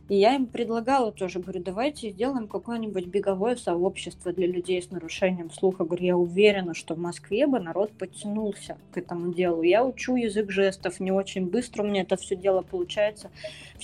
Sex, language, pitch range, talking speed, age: female, Russian, 170-210 Hz, 180 wpm, 20-39